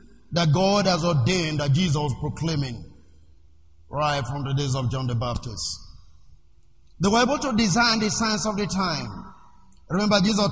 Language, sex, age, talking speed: English, male, 50-69, 160 wpm